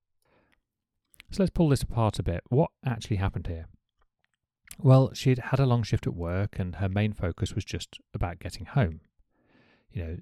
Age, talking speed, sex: 30-49, 175 wpm, male